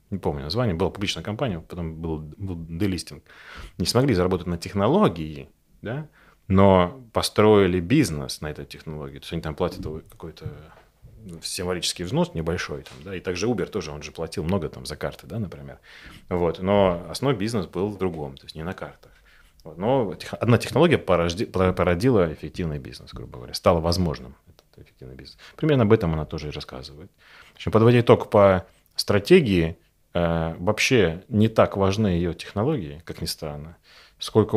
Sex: male